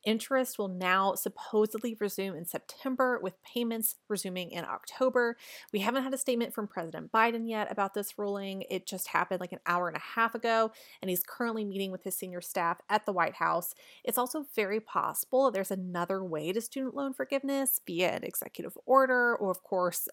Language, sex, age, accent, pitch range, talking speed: English, female, 30-49, American, 180-220 Hz, 190 wpm